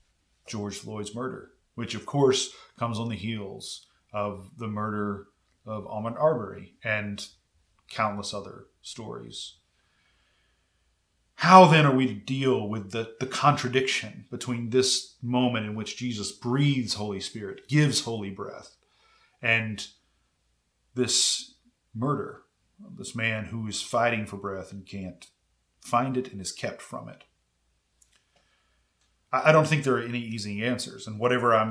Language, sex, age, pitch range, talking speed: English, male, 30-49, 100-125 Hz, 140 wpm